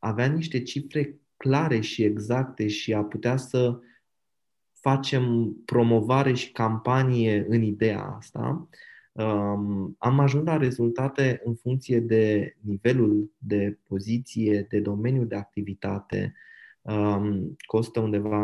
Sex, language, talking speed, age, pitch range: male, Romanian, 115 wpm, 20-39, 105-125 Hz